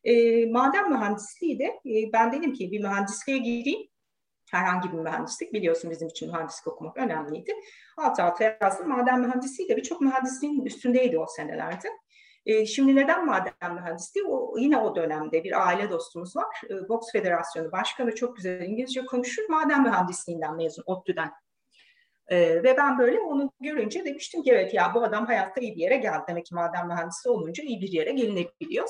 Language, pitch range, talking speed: Turkish, 175-275 Hz, 170 wpm